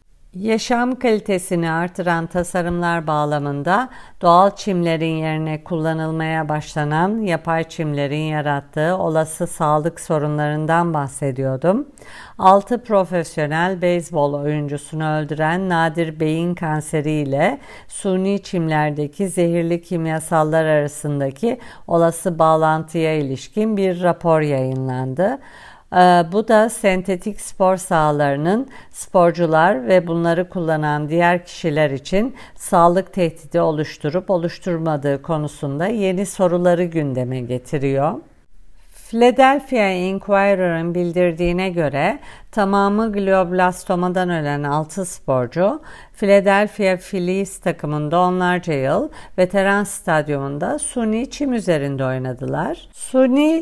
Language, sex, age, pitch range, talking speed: Turkish, female, 50-69, 155-195 Hz, 90 wpm